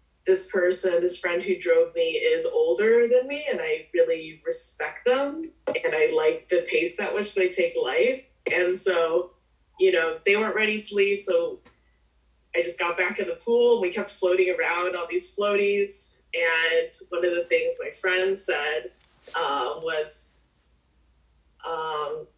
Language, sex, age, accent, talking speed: English, female, 20-39, American, 165 wpm